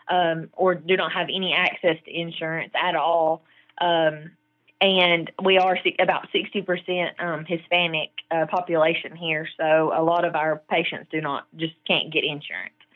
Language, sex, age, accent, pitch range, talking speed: English, female, 20-39, American, 160-180 Hz, 160 wpm